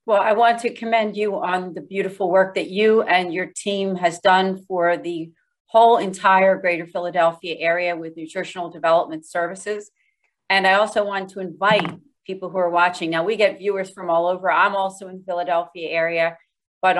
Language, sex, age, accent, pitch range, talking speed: English, female, 40-59, American, 175-200 Hz, 180 wpm